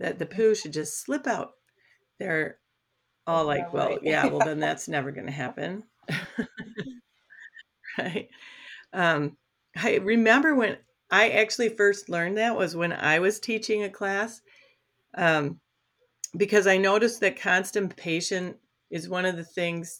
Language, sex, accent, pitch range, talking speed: English, female, American, 155-205 Hz, 145 wpm